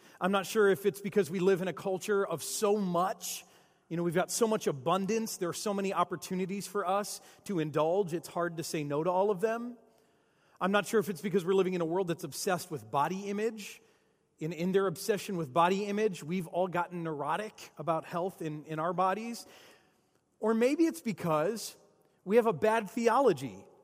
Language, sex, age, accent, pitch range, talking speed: English, male, 30-49, American, 175-225 Hz, 205 wpm